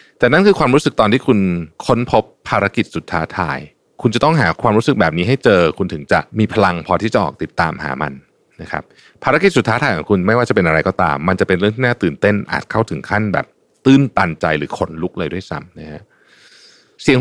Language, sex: Thai, male